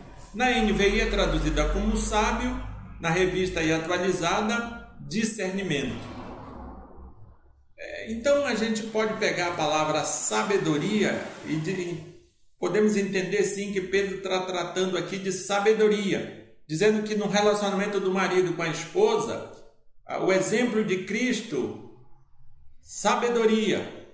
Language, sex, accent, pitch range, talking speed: Portuguese, male, Brazilian, 180-215 Hz, 105 wpm